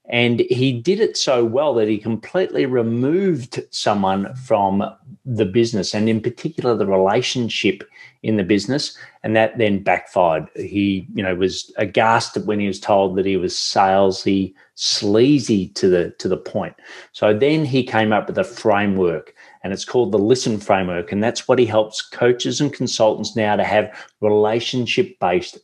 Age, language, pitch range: 30-49, English, 100-130 Hz